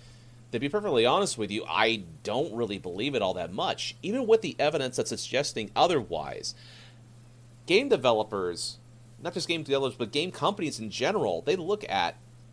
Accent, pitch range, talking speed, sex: American, 110-130 Hz, 170 wpm, male